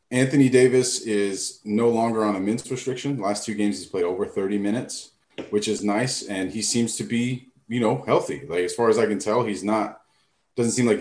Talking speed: 225 wpm